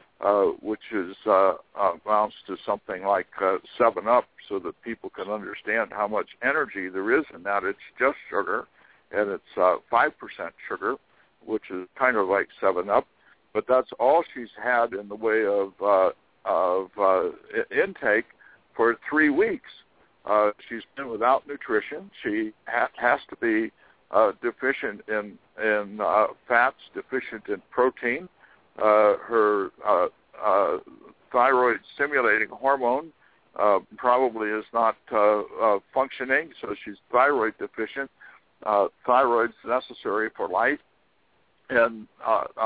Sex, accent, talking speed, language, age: male, American, 135 wpm, English, 60-79